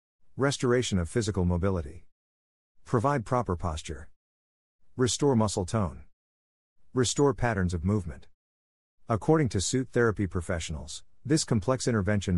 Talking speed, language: 105 wpm, English